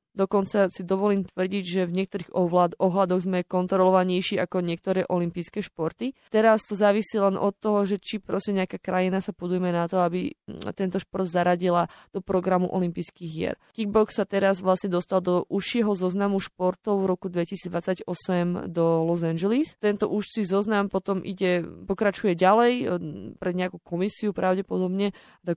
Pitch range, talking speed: 180-200 Hz, 155 wpm